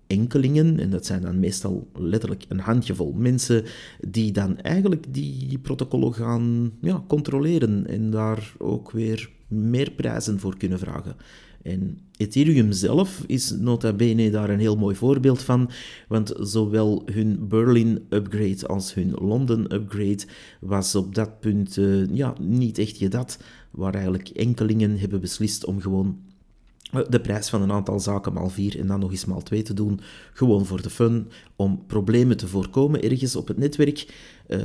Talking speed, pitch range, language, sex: 160 wpm, 100-120 Hz, Dutch, male